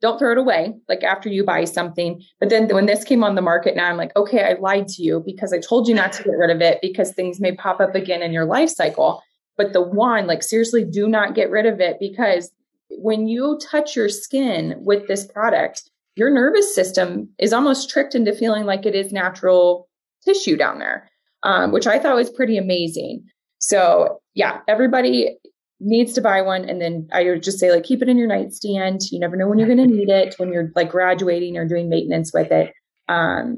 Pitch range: 180-225 Hz